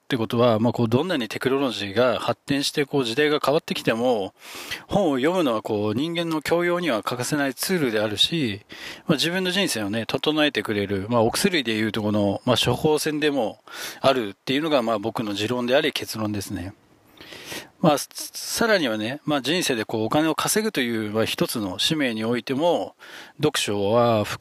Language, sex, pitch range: Japanese, male, 110-155 Hz